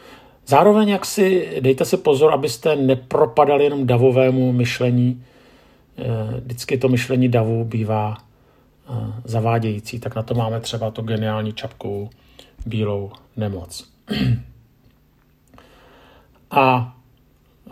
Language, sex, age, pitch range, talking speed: Czech, male, 50-69, 120-140 Hz, 90 wpm